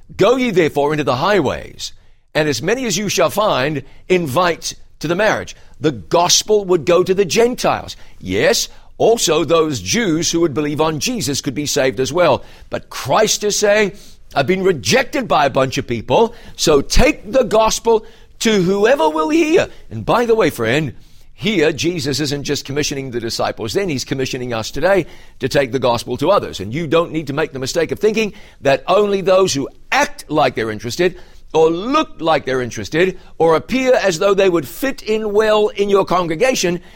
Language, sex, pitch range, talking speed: English, male, 130-190 Hz, 185 wpm